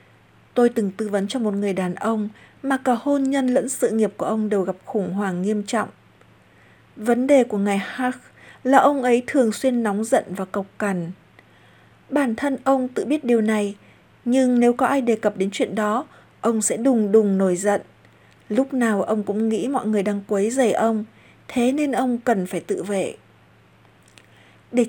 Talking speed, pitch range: 195 wpm, 205-255 Hz